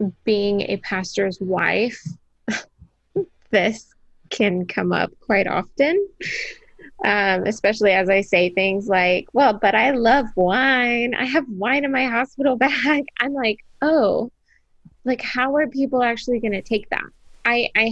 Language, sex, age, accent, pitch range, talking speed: English, female, 20-39, American, 185-220 Hz, 145 wpm